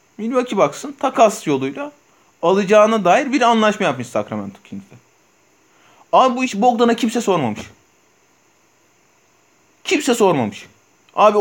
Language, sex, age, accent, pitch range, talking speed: Turkish, male, 30-49, native, 140-215 Hz, 105 wpm